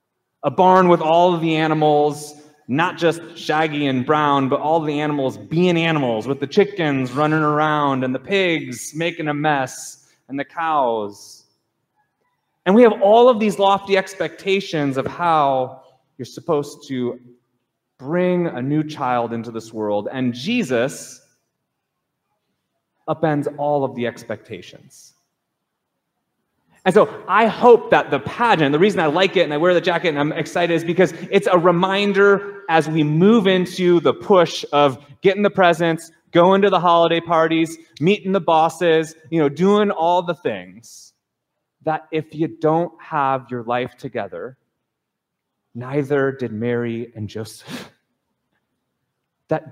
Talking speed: 145 wpm